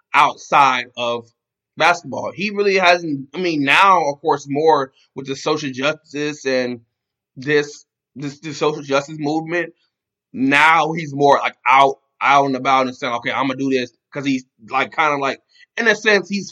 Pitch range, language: 135-160 Hz, English